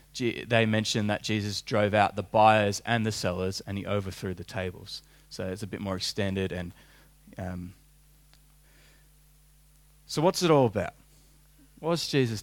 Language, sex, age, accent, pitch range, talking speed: English, male, 20-39, Australian, 110-150 Hz, 150 wpm